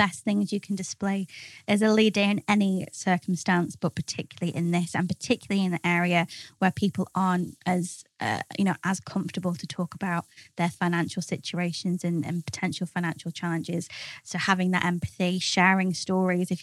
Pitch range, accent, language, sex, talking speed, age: 175-195 Hz, British, English, female, 165 wpm, 20-39